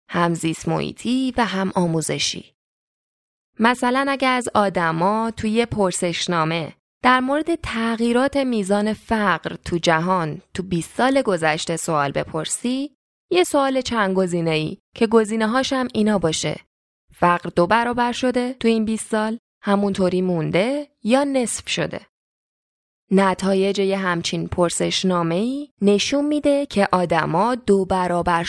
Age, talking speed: 20-39, 120 wpm